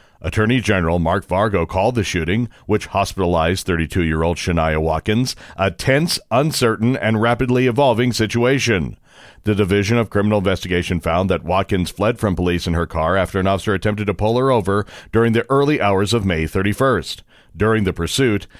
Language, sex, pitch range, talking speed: English, male, 95-125 Hz, 165 wpm